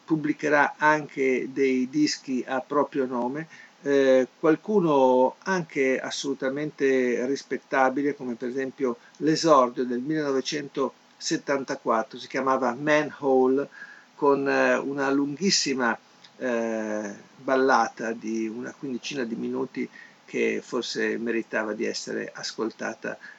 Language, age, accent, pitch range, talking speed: Italian, 50-69, native, 125-150 Hz, 95 wpm